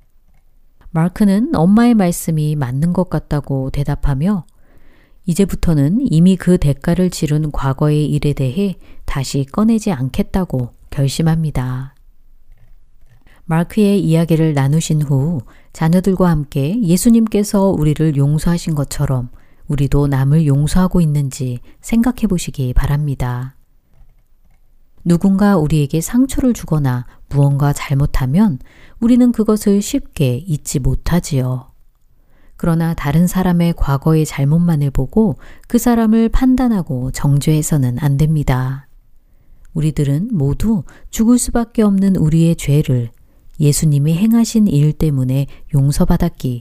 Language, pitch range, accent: Korean, 140-190 Hz, native